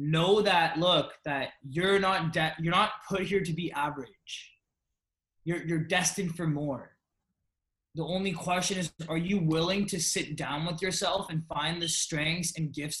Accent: American